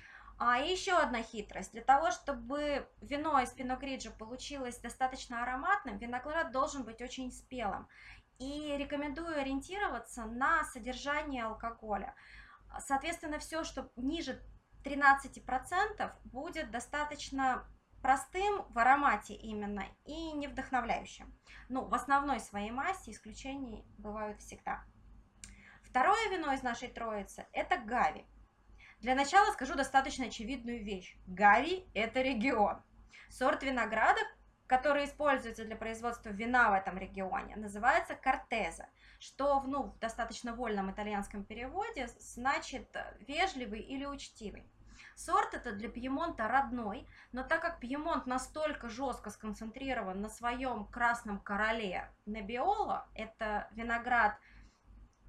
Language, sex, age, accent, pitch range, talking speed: Russian, female, 20-39, native, 225-285 Hz, 115 wpm